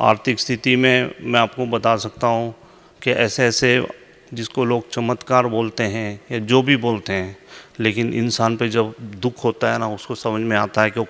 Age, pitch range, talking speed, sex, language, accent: 30-49, 110-125 Hz, 195 wpm, male, Hindi, native